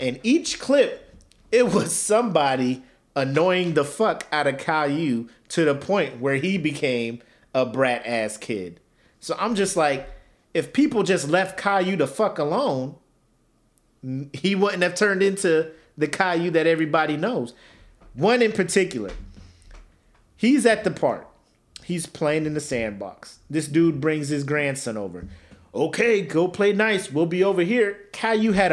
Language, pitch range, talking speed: English, 130-195 Hz, 150 wpm